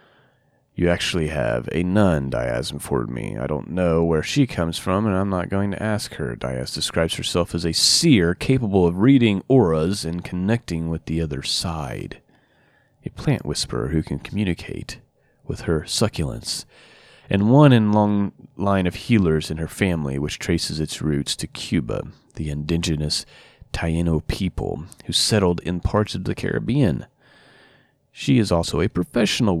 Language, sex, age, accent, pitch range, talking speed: English, male, 30-49, American, 80-100 Hz, 160 wpm